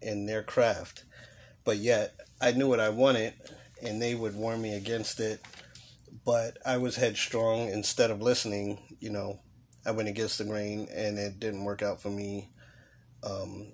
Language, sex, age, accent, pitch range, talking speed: English, male, 30-49, American, 105-120 Hz, 170 wpm